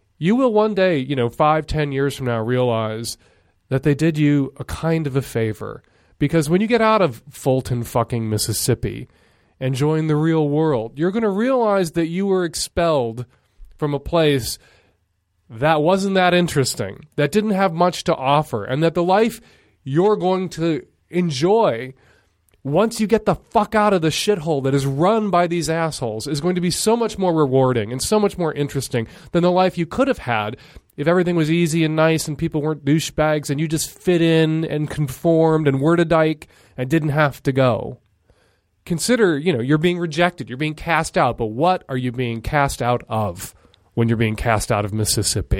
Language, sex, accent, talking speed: English, male, American, 195 wpm